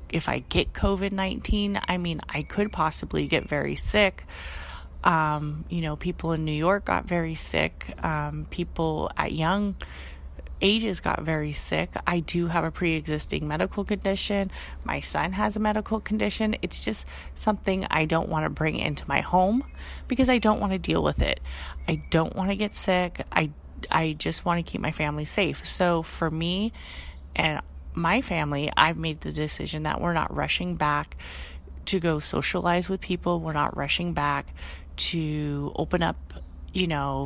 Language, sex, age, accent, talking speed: English, female, 30-49, American, 170 wpm